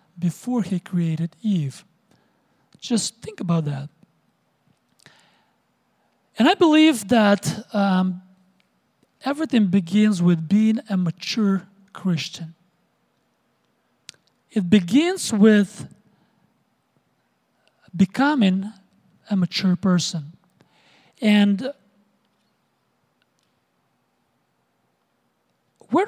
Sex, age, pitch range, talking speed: male, 40-59, 175-215 Hz, 65 wpm